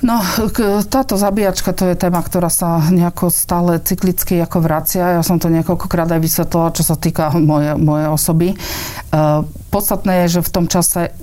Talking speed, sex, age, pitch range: 160 wpm, female, 50-69, 155-175 Hz